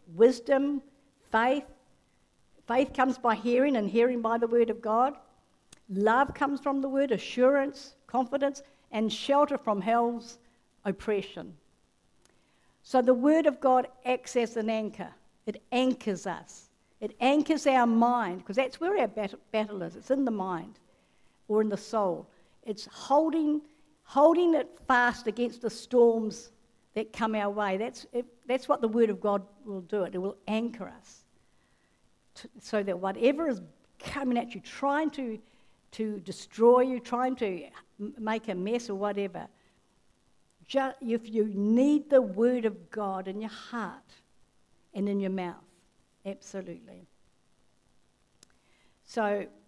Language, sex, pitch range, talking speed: English, female, 210-260 Hz, 145 wpm